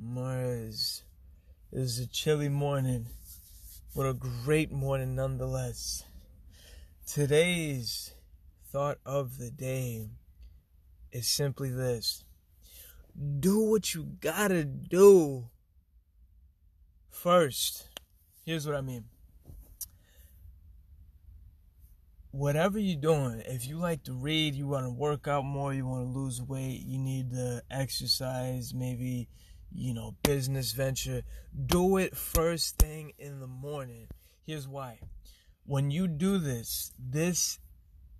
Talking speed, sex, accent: 110 wpm, male, American